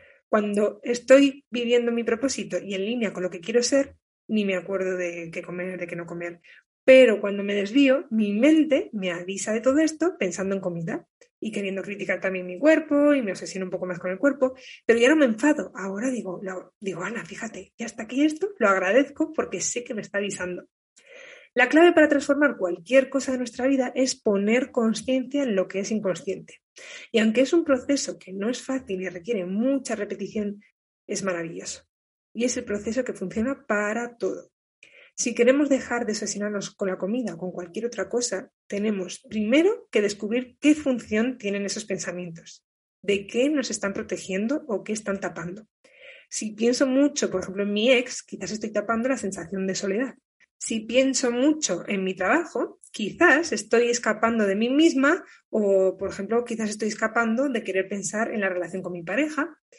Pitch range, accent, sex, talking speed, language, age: 195-265 Hz, Spanish, female, 190 wpm, Spanish, 20-39